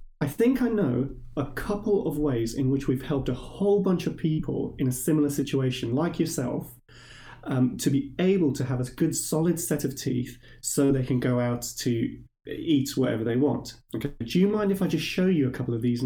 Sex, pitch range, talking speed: male, 120-150 Hz, 215 wpm